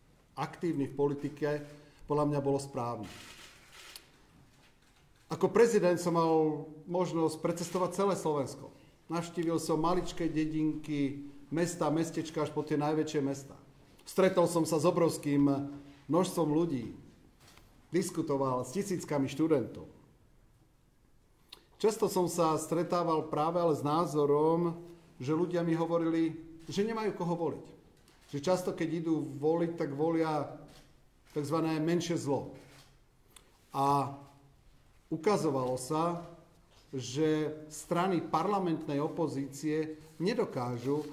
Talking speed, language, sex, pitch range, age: 105 wpm, Slovak, male, 145-170 Hz, 40-59